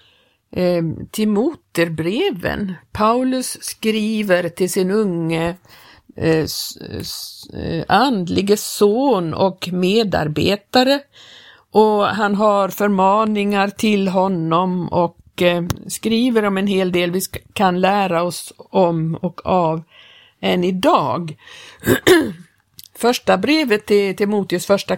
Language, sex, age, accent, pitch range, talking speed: Swedish, female, 50-69, native, 175-215 Hz, 90 wpm